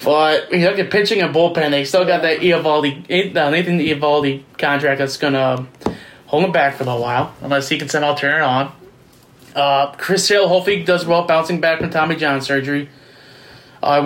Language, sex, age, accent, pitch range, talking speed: English, male, 20-39, American, 140-175 Hz, 200 wpm